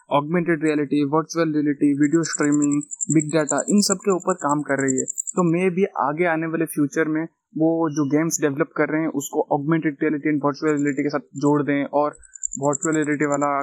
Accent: native